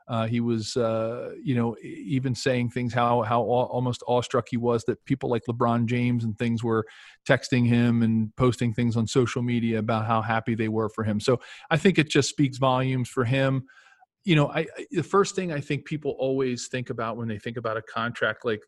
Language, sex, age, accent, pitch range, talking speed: English, male, 40-59, American, 120-145 Hz, 210 wpm